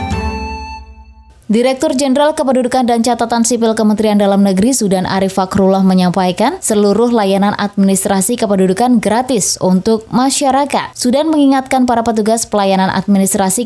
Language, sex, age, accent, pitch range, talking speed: Indonesian, female, 20-39, native, 195-255 Hz, 115 wpm